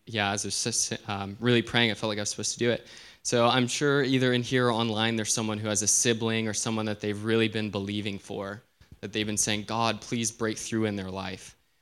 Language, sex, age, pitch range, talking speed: English, male, 20-39, 105-120 Hz, 250 wpm